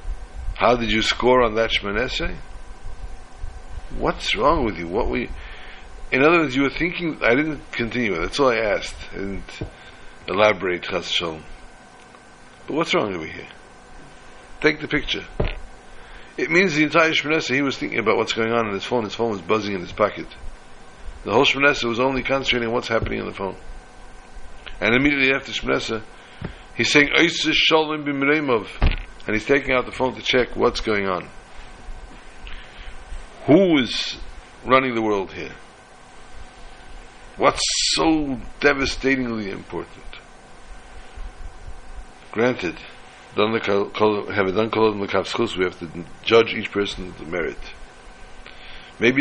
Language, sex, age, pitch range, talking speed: English, male, 60-79, 105-135 Hz, 140 wpm